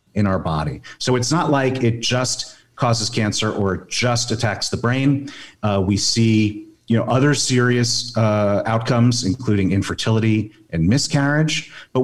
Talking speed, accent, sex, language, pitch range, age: 150 wpm, American, male, English, 105-125 Hz, 40-59